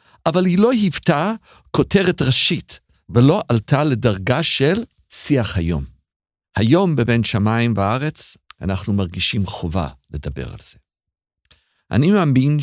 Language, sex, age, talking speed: Hebrew, male, 50-69, 115 wpm